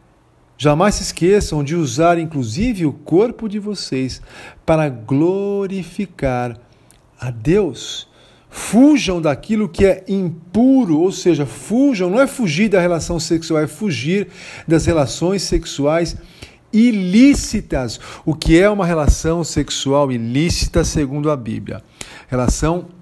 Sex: male